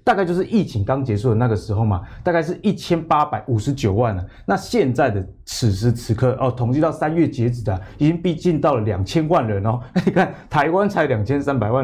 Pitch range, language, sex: 115-155 Hz, Chinese, male